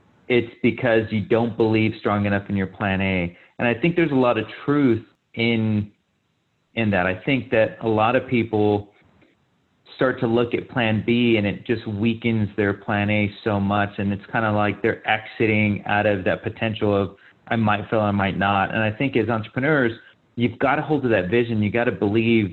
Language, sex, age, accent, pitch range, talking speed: English, male, 30-49, American, 105-120 Hz, 210 wpm